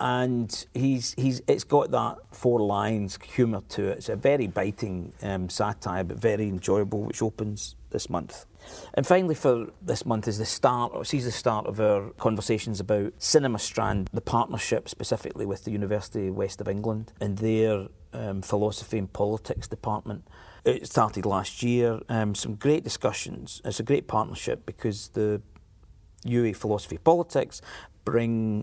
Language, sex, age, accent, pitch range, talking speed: English, male, 40-59, British, 100-115 Hz, 160 wpm